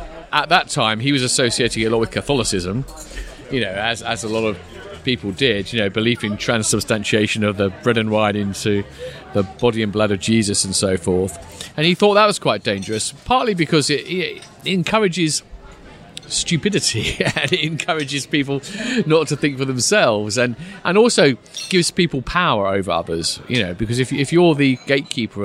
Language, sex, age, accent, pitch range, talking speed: English, male, 40-59, British, 105-155 Hz, 180 wpm